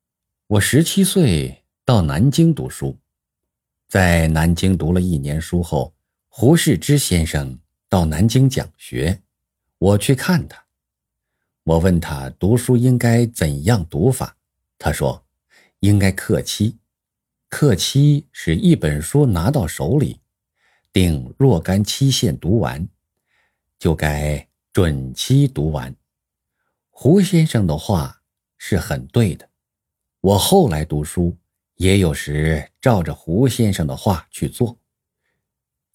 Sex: male